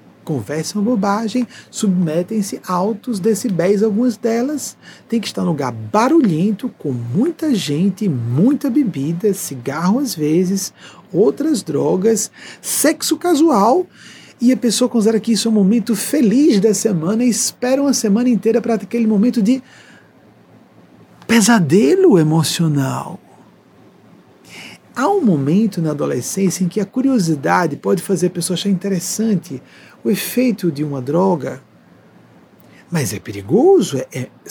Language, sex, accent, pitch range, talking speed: Portuguese, male, Brazilian, 155-225 Hz, 125 wpm